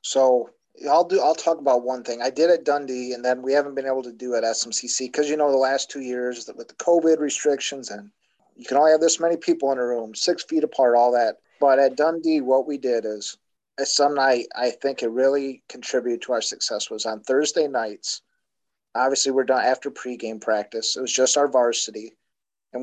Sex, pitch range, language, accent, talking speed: male, 125-145 Hz, English, American, 220 wpm